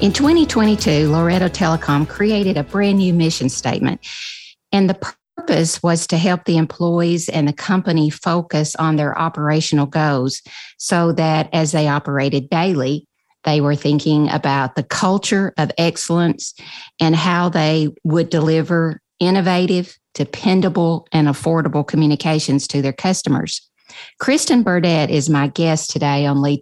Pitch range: 150-185 Hz